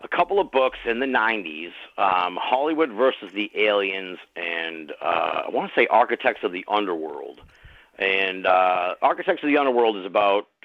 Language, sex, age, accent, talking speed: English, male, 50-69, American, 170 wpm